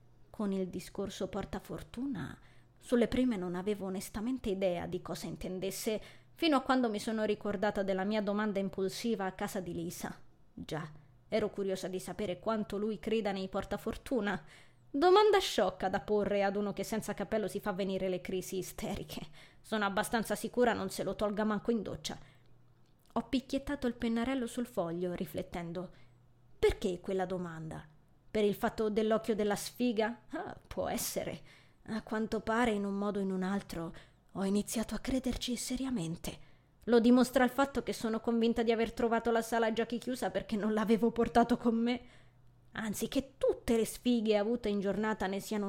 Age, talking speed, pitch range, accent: 20-39, 165 wpm, 190-235 Hz, native